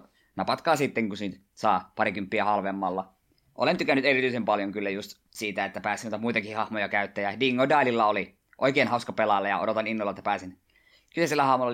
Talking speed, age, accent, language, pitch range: 165 wpm, 20-39, native, Finnish, 105-120 Hz